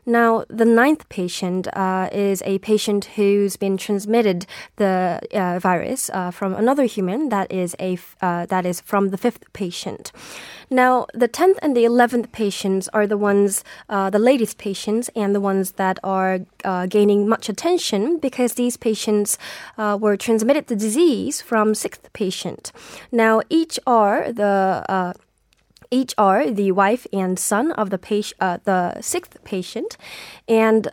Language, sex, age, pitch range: Korean, female, 20-39, 190-230 Hz